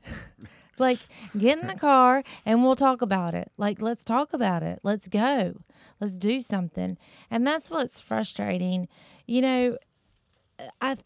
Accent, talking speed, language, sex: American, 145 wpm, English, female